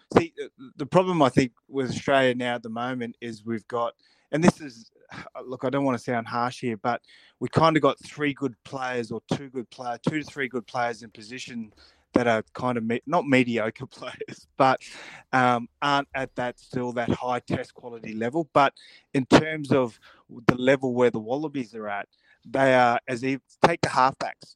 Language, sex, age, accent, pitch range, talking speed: English, male, 20-39, Australian, 115-135 Hz, 200 wpm